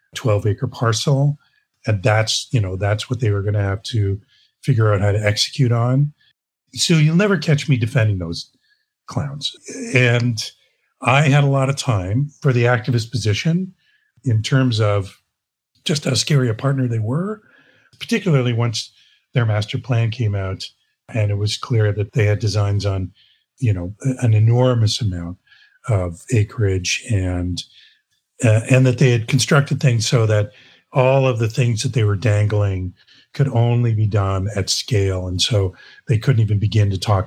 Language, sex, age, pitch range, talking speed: English, male, 50-69, 105-140 Hz, 165 wpm